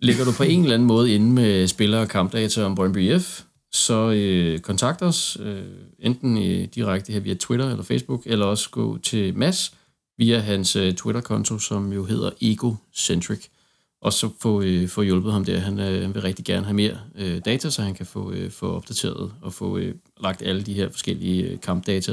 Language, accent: Danish, native